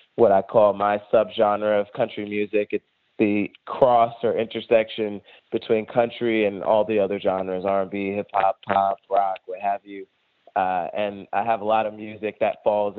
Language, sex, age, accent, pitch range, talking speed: English, male, 20-39, American, 100-115 Hz, 160 wpm